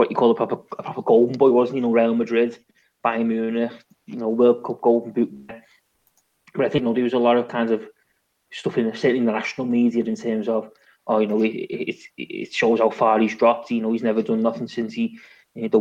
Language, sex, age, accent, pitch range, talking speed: English, male, 20-39, British, 115-120 Hz, 245 wpm